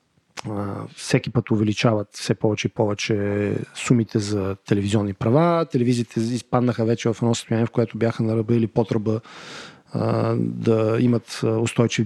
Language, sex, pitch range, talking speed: Bulgarian, male, 115-135 Hz, 125 wpm